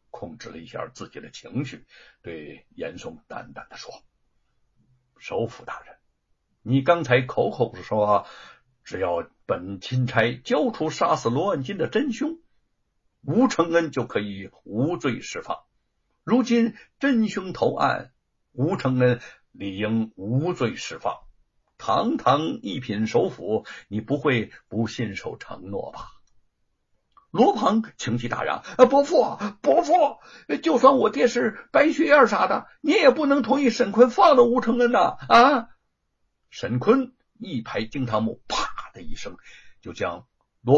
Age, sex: 60-79, male